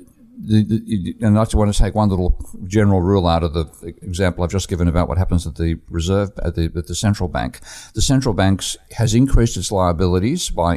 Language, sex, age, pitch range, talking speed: English, male, 50-69, 85-100 Hz, 215 wpm